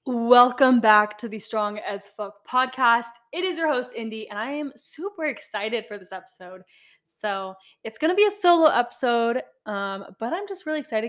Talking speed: 190 wpm